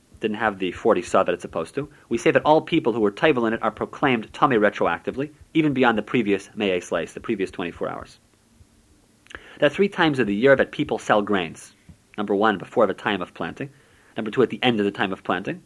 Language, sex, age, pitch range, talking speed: English, male, 40-59, 105-140 Hz, 235 wpm